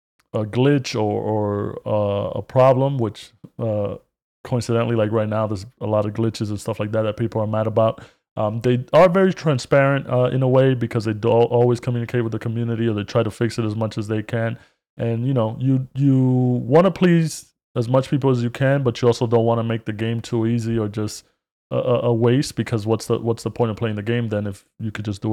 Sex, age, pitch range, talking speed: male, 20-39, 110-130 Hz, 240 wpm